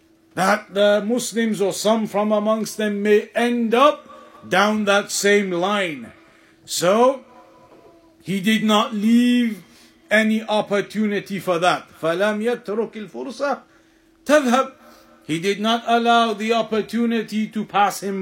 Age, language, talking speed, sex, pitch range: 50-69, English, 120 wpm, male, 215-260 Hz